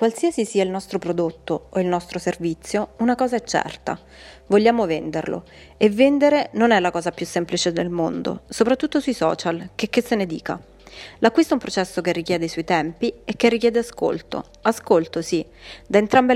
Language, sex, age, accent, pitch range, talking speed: Italian, female, 30-49, native, 175-235 Hz, 185 wpm